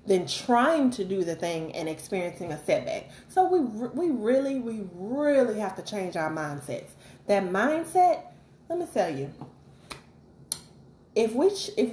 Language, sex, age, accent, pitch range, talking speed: English, female, 30-49, American, 180-250 Hz, 150 wpm